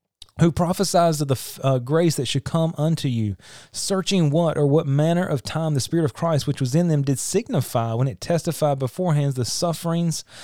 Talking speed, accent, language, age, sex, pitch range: 195 wpm, American, English, 30-49, male, 130-160 Hz